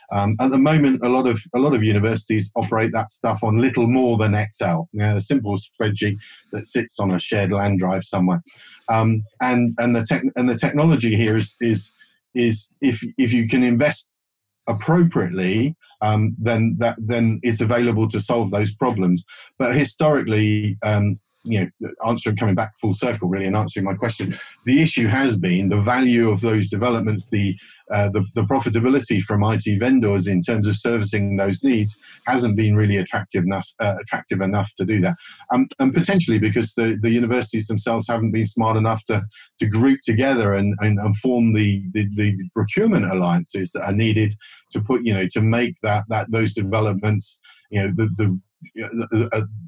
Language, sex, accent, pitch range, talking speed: English, male, British, 105-120 Hz, 180 wpm